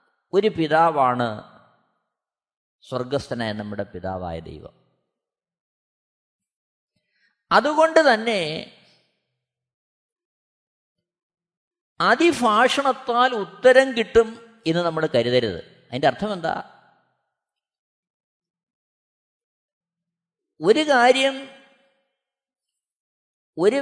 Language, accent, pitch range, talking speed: Malayalam, native, 175-250 Hz, 50 wpm